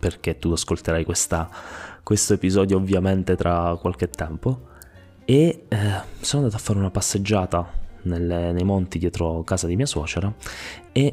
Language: Italian